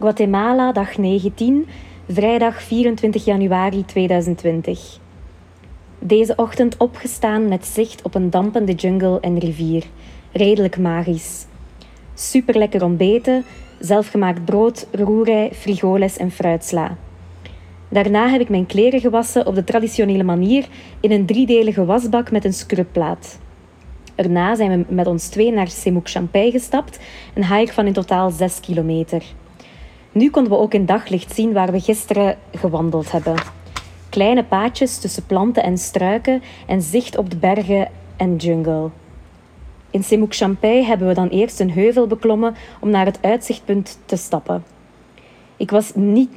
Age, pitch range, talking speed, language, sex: 20-39, 175-220 Hz, 135 wpm, Dutch, female